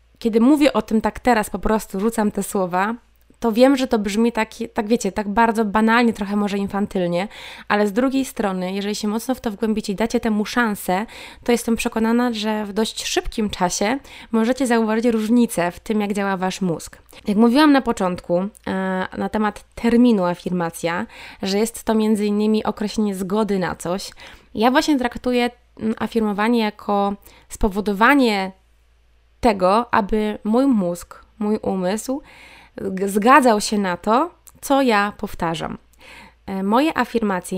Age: 20-39